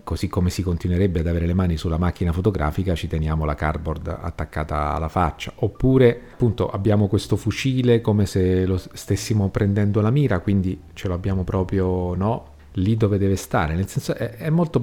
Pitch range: 85-110 Hz